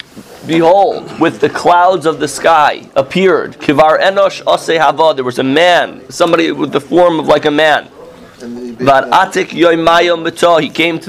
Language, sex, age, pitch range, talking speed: English, male, 30-49, 135-170 Hz, 125 wpm